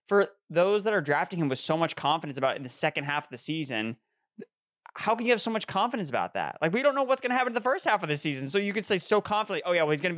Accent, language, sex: American, English, male